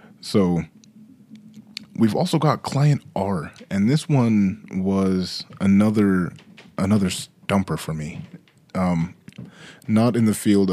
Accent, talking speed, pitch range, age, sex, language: American, 110 wpm, 90-125 Hz, 20-39, male, English